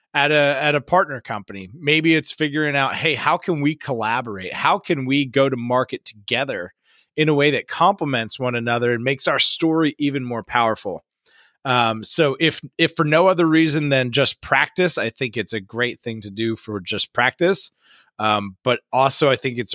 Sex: male